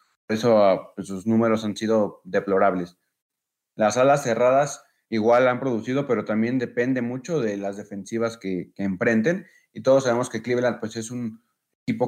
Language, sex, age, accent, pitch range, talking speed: Spanish, male, 30-49, Mexican, 105-120 Hz, 155 wpm